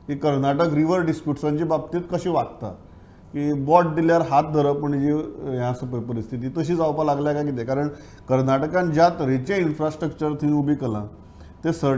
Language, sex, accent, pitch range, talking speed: English, male, Indian, 130-175 Hz, 75 wpm